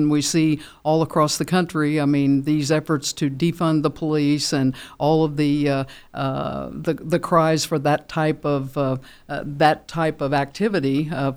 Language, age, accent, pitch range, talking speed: English, 60-79, American, 145-170 Hz, 180 wpm